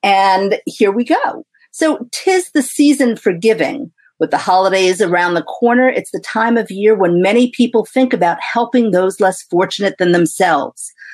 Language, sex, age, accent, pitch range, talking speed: English, female, 50-69, American, 180-250 Hz, 170 wpm